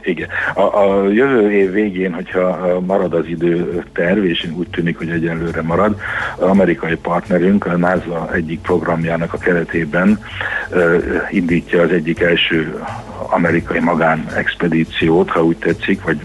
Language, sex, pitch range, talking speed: Hungarian, male, 80-90 Hz, 135 wpm